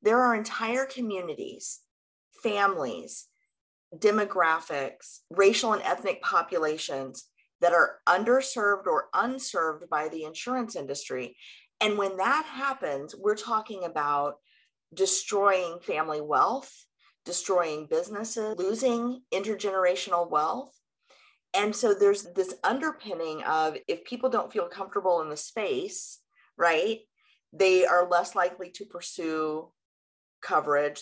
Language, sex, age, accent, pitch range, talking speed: English, female, 30-49, American, 170-245 Hz, 110 wpm